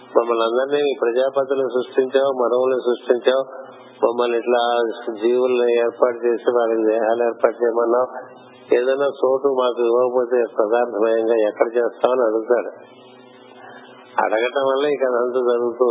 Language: Telugu